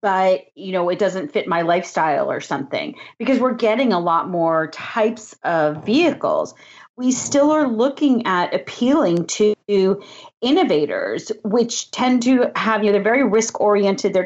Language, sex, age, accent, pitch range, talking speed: English, female, 40-59, American, 195-265 Hz, 165 wpm